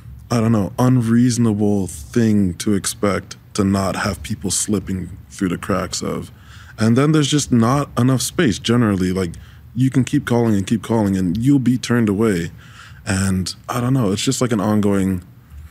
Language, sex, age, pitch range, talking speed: English, male, 20-39, 95-115 Hz, 175 wpm